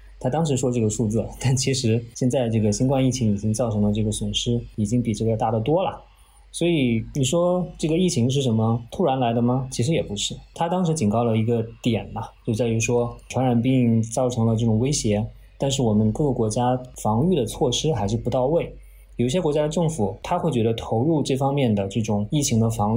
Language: Chinese